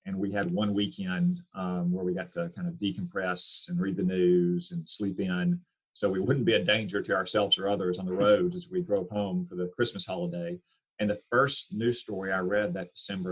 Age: 40-59